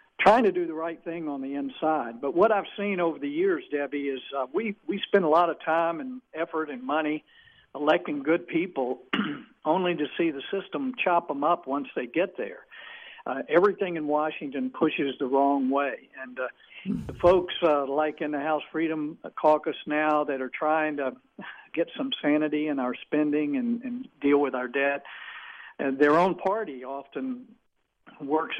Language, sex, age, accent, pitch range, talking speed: English, male, 50-69, American, 145-185 Hz, 185 wpm